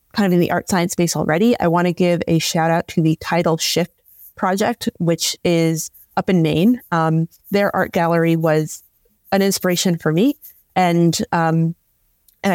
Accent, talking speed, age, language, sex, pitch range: American, 170 wpm, 20-39, English, female, 160-195 Hz